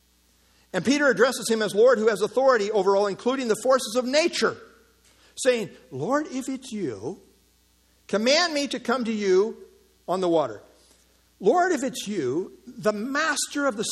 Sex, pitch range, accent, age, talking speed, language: male, 200-285 Hz, American, 50-69, 165 wpm, English